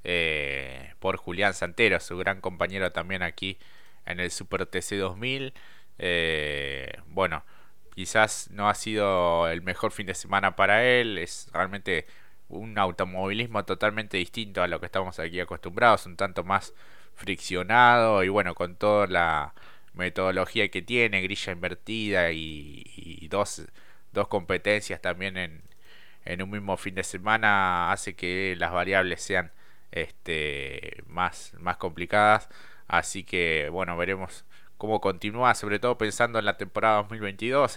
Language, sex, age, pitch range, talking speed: Spanish, male, 20-39, 85-105 Hz, 135 wpm